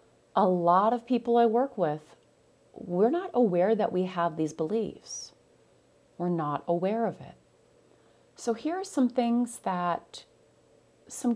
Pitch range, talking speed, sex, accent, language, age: 160-225 Hz, 145 wpm, female, American, English, 30-49